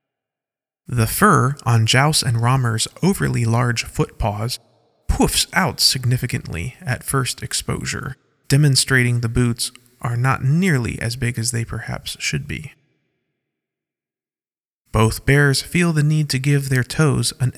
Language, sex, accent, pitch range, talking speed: English, male, American, 115-140 Hz, 130 wpm